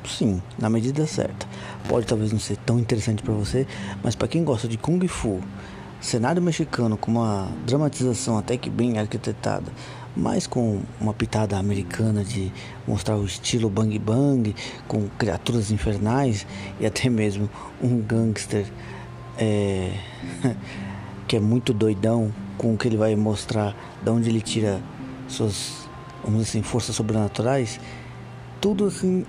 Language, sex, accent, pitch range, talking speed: Portuguese, male, Brazilian, 110-130 Hz, 145 wpm